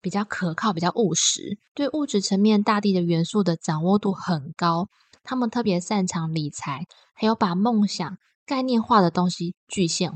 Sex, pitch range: female, 170-215 Hz